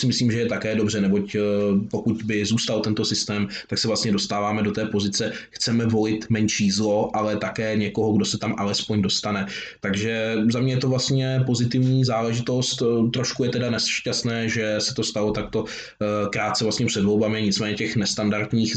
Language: Czech